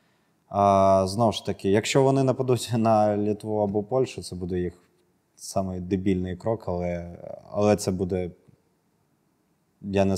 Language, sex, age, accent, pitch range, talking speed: Russian, male, 20-39, native, 95-120 Hz, 135 wpm